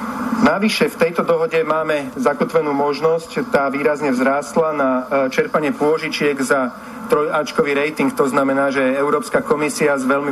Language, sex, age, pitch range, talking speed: Slovak, male, 40-59, 145-235 Hz, 135 wpm